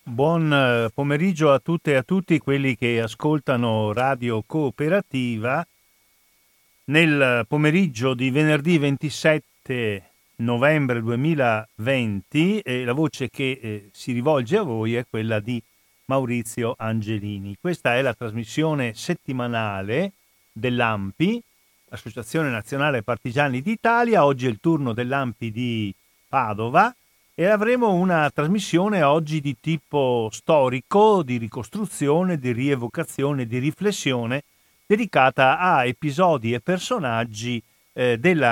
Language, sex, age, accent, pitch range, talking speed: Italian, male, 40-59, native, 115-160 Hz, 110 wpm